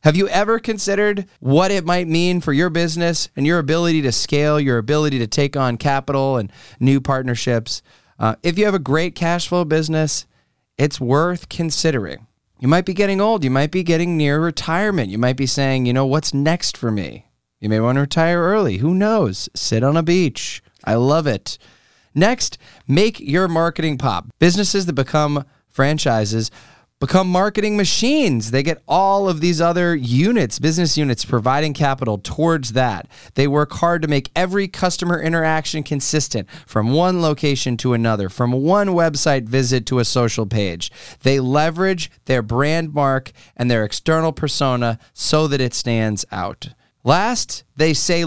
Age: 20-39